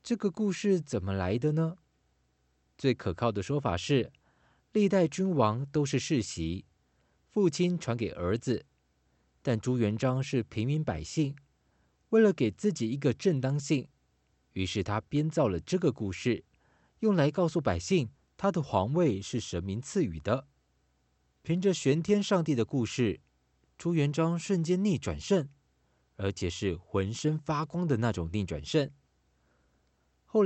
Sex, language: male, Chinese